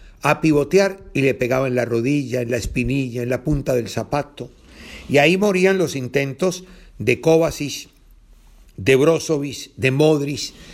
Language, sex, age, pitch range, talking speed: Spanish, male, 50-69, 115-155 Hz, 150 wpm